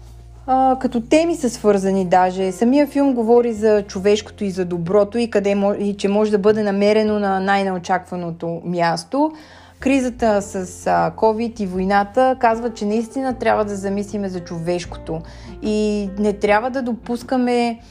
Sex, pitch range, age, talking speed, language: female, 190-235 Hz, 20-39, 145 wpm, Bulgarian